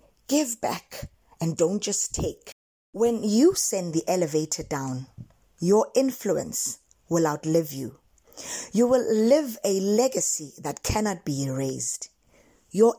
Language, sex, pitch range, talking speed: English, female, 165-235 Hz, 125 wpm